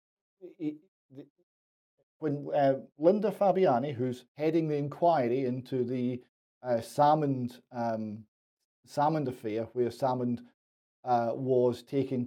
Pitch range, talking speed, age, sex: 115-145 Hz, 95 wpm, 40-59, male